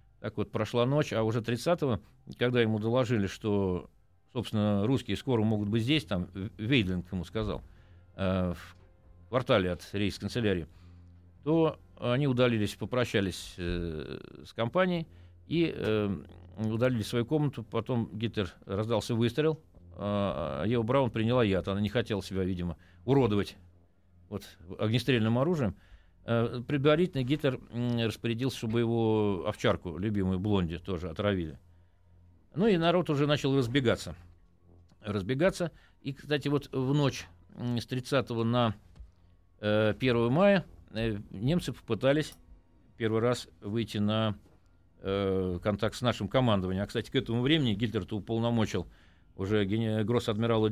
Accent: native